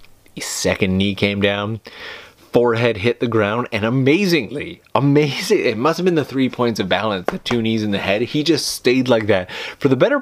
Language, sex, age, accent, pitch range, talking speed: English, male, 30-49, American, 100-125 Hz, 205 wpm